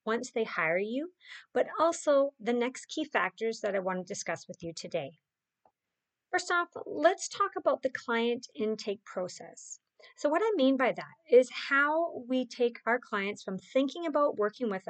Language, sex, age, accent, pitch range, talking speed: English, female, 40-59, American, 200-275 Hz, 175 wpm